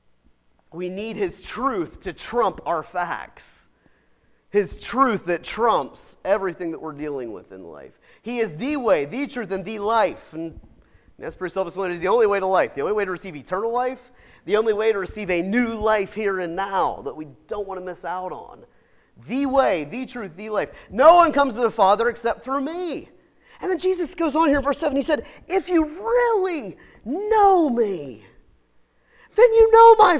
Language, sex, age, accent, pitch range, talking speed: English, male, 30-49, American, 190-315 Hz, 195 wpm